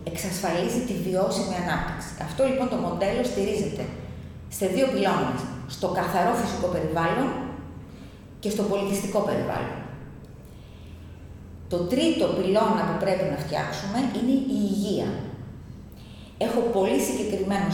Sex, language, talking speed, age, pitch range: female, Greek, 110 wpm, 30-49, 165-220 Hz